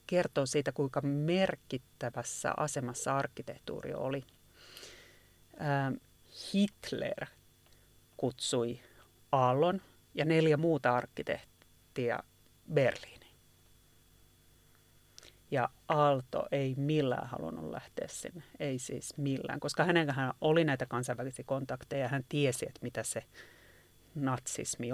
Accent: native